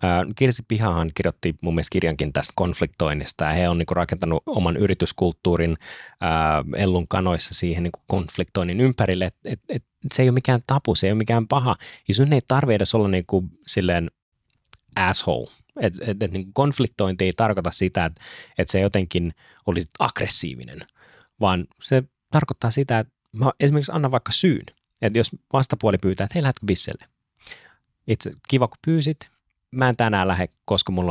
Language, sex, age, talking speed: Finnish, male, 30-49, 160 wpm